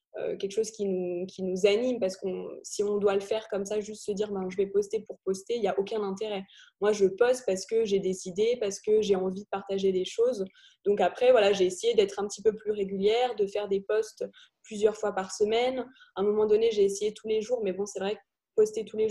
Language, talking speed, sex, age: French, 260 wpm, female, 20-39